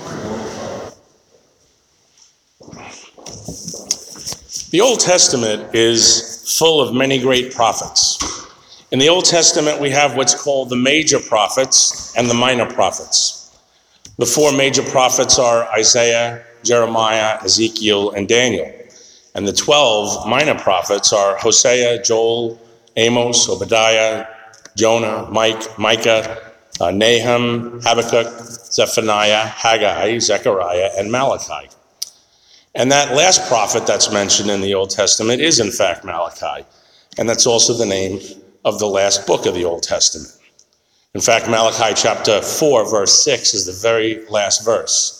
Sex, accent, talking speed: male, American, 125 wpm